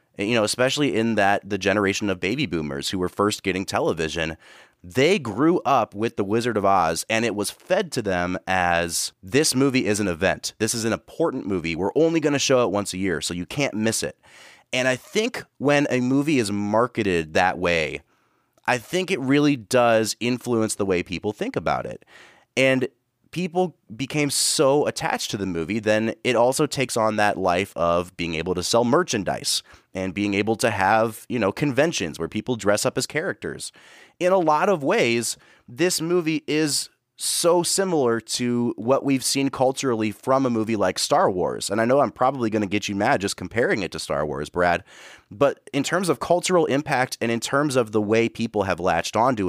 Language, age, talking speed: English, 30-49, 200 wpm